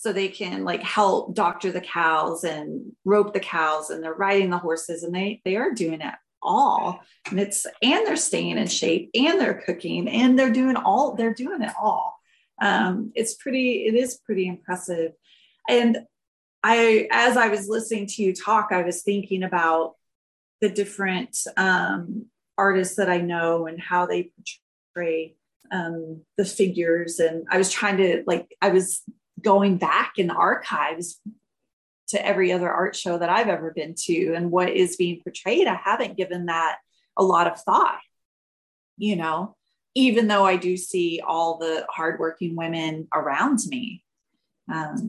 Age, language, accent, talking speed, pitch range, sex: 30-49, English, American, 170 wpm, 170-215 Hz, female